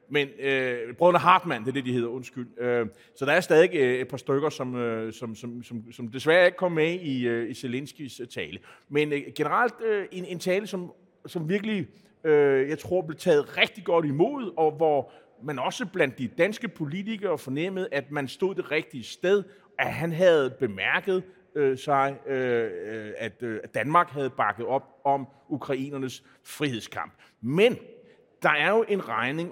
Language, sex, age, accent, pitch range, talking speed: Danish, male, 30-49, native, 120-170 Hz, 175 wpm